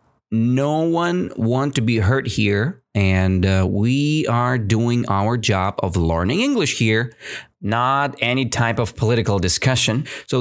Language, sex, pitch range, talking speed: English, male, 100-145 Hz, 145 wpm